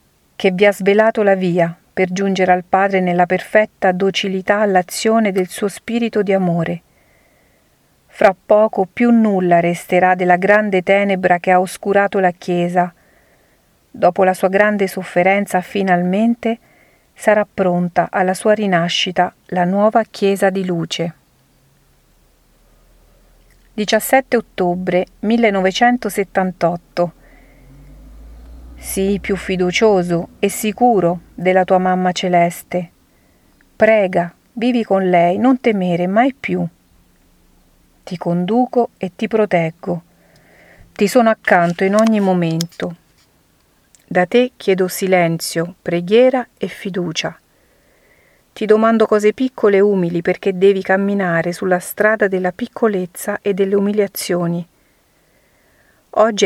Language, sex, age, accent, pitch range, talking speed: Italian, female, 40-59, native, 175-205 Hz, 110 wpm